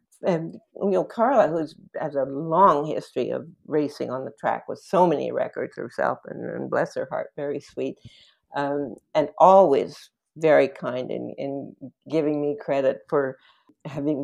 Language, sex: English, female